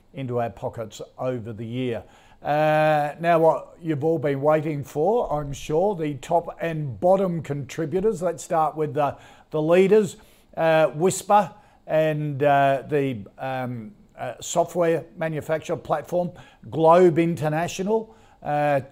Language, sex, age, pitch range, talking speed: English, male, 50-69, 130-165 Hz, 125 wpm